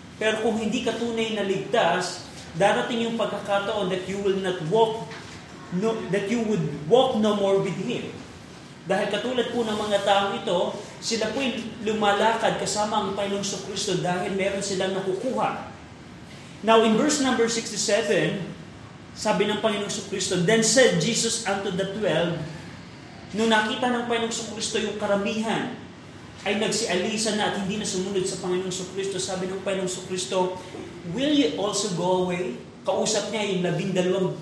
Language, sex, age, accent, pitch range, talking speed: Filipino, male, 20-39, native, 185-225 Hz, 155 wpm